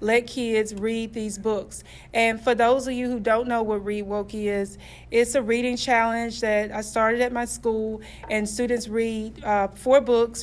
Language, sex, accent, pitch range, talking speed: English, female, American, 215-240 Hz, 190 wpm